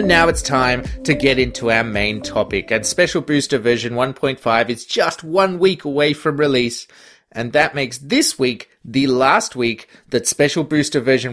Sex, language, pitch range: male, English, 120-165 Hz